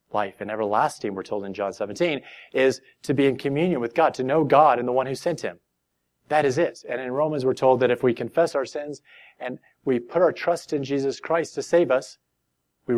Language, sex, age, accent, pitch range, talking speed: English, male, 30-49, American, 125-155 Hz, 230 wpm